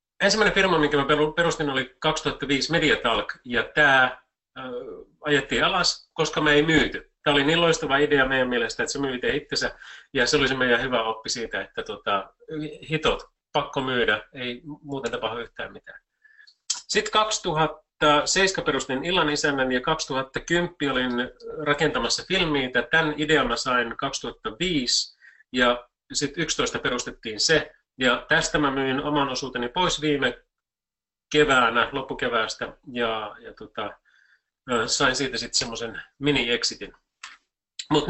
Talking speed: 130 wpm